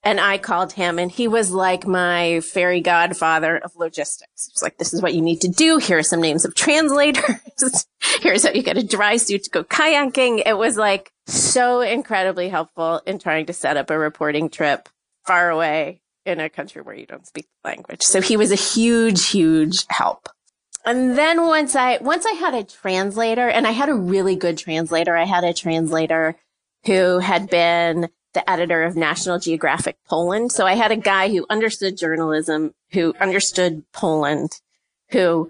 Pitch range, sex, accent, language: 165-220 Hz, female, American, English